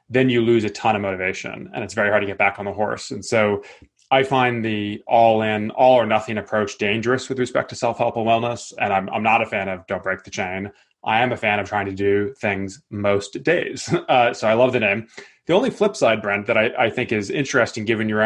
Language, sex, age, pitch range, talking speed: English, male, 20-39, 100-125 Hz, 250 wpm